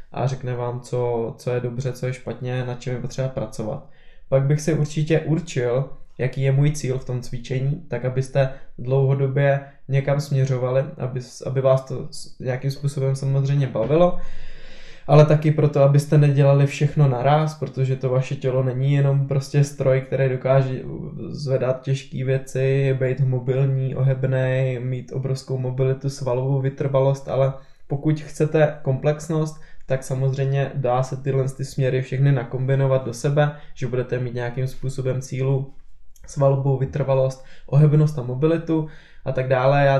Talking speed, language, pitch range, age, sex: 145 wpm, Czech, 130-145 Hz, 20-39, male